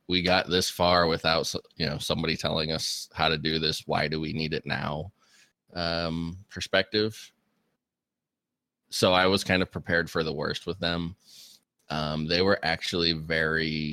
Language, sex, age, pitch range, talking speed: English, male, 20-39, 75-90 Hz, 165 wpm